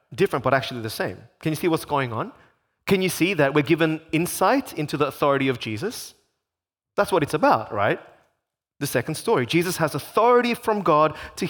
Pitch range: 145-220 Hz